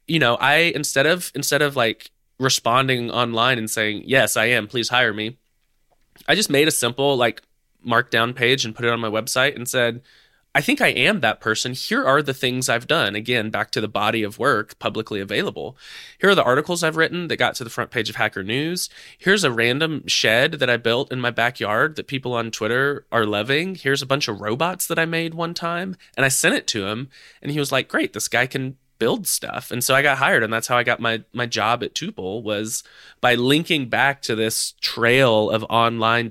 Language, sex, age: English, male, 20-39